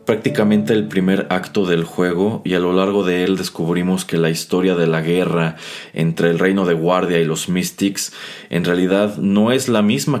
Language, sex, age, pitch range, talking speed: Spanish, male, 30-49, 85-105 Hz, 195 wpm